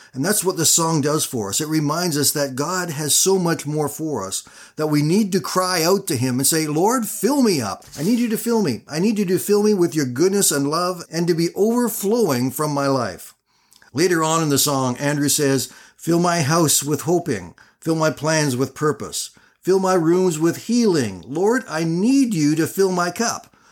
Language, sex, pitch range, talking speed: English, male, 145-190 Hz, 220 wpm